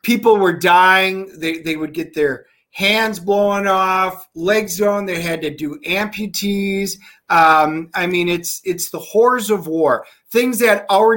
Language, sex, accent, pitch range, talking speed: English, male, American, 165-205 Hz, 160 wpm